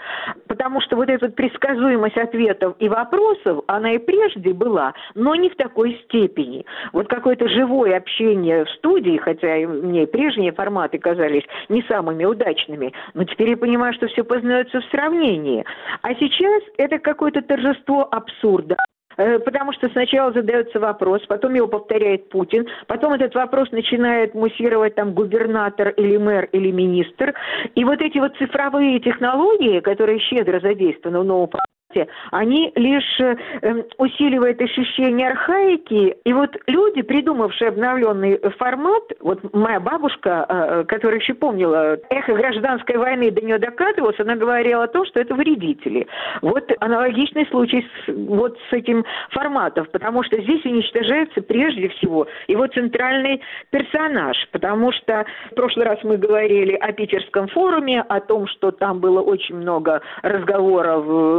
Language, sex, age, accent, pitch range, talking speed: Russian, female, 50-69, native, 205-270 Hz, 140 wpm